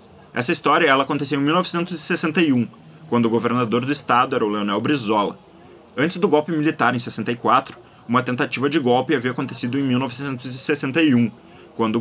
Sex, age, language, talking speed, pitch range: male, 20-39, Portuguese, 150 wpm, 125-165 Hz